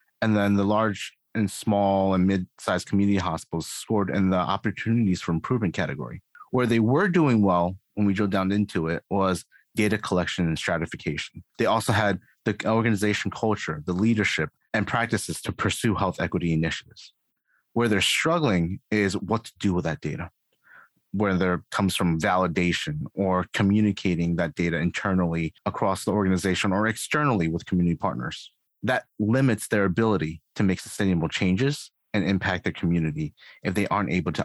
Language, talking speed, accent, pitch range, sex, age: English, 160 wpm, American, 90-115 Hz, male, 30-49